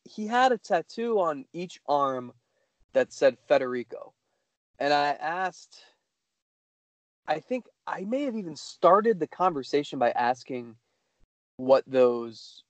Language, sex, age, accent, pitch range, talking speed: English, male, 20-39, American, 120-160 Hz, 125 wpm